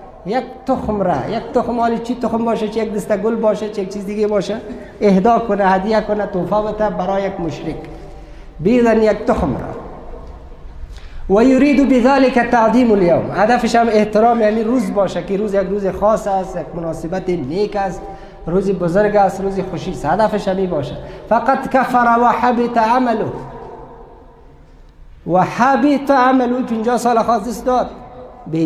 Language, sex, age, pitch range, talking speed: English, male, 50-69, 160-225 Hz, 75 wpm